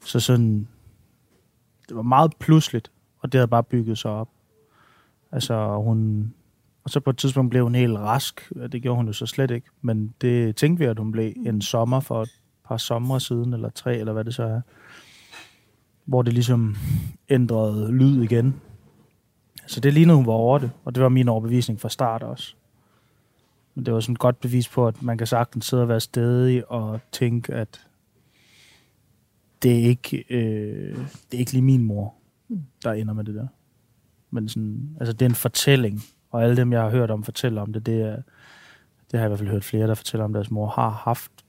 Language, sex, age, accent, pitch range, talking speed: Danish, male, 30-49, native, 110-125 Hz, 205 wpm